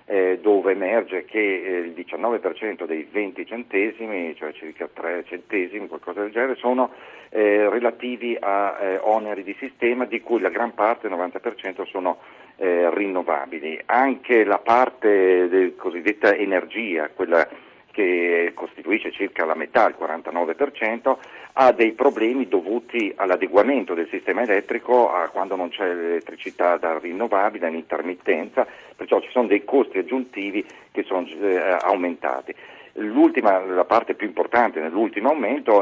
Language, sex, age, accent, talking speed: Italian, male, 50-69, native, 130 wpm